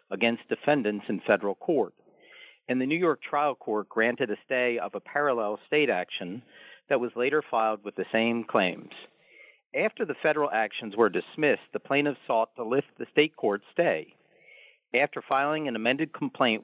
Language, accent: English, American